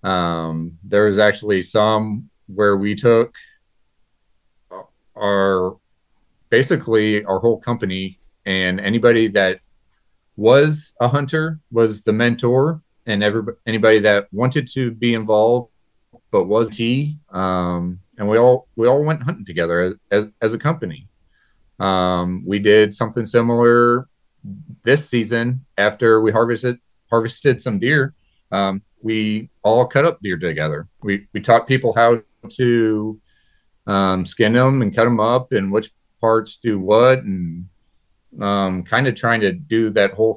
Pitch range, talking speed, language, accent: 100-120 Hz, 140 wpm, English, American